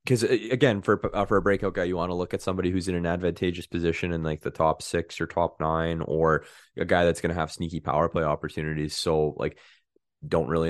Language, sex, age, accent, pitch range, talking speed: English, male, 20-39, American, 80-90 Hz, 235 wpm